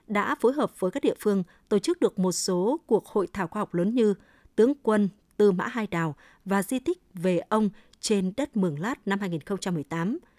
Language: Vietnamese